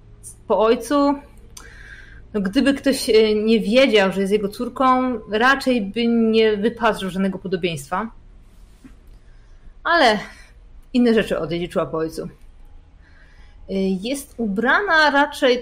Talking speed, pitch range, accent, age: 105 wpm, 170-225 Hz, native, 30-49